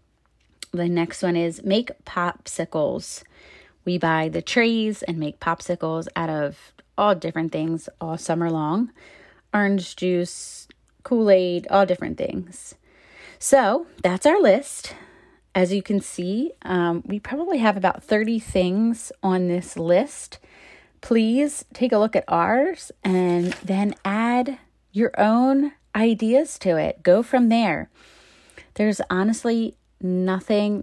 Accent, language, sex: American, English, female